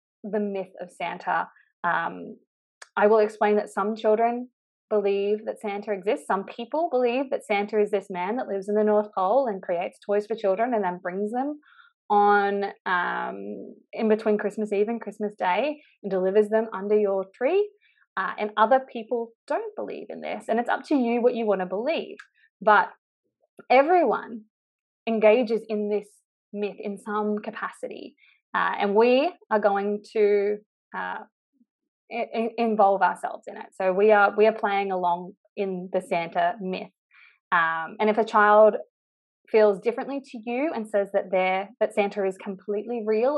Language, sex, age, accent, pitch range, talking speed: English, female, 20-39, Australian, 200-235 Hz, 165 wpm